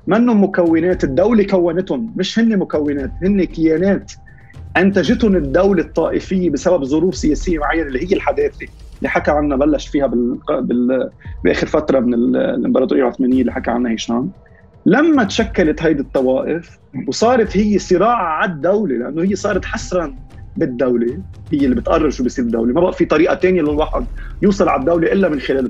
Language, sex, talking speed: Arabic, male, 160 wpm